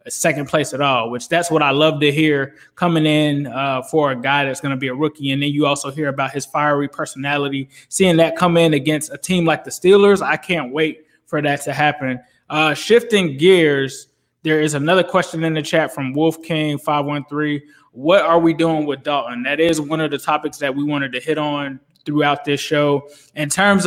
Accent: American